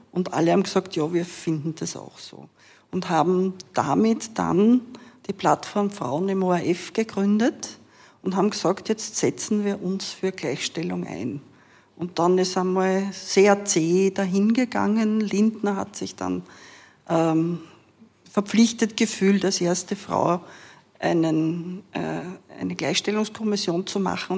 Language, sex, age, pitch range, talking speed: German, female, 50-69, 175-205 Hz, 130 wpm